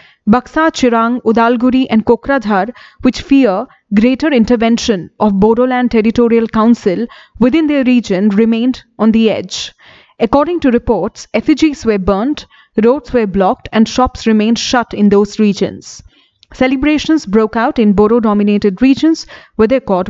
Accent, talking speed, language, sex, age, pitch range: Indian, 135 wpm, English, female, 30-49, 215-255 Hz